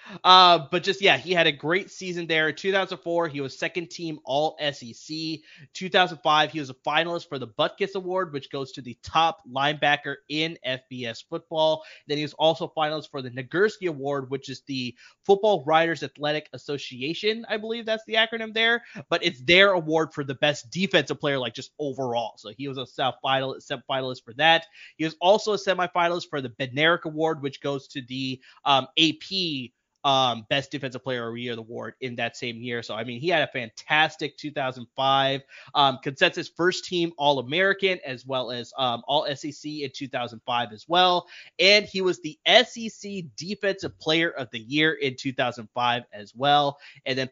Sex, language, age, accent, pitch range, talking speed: male, English, 20-39, American, 135-170 Hz, 185 wpm